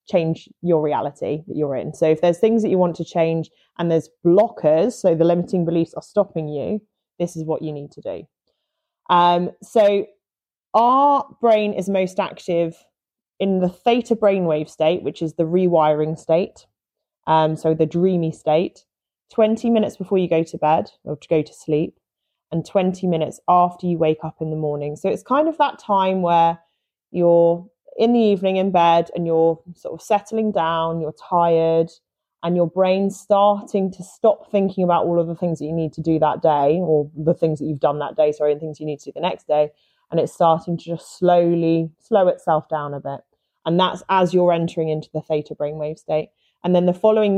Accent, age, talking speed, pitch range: British, 30-49, 200 wpm, 160-190 Hz